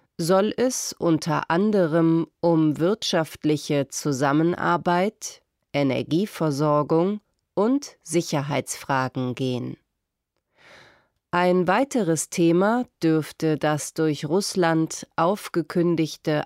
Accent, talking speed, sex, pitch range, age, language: German, 70 wpm, female, 150-190 Hz, 30-49, English